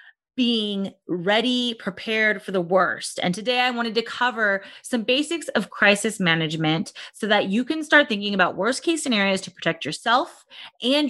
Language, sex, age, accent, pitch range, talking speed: English, female, 30-49, American, 195-270 Hz, 170 wpm